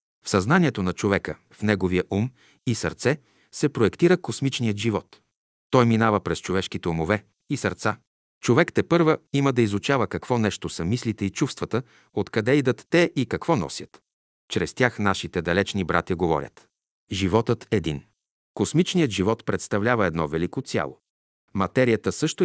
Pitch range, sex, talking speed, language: 95-125 Hz, male, 145 wpm, Bulgarian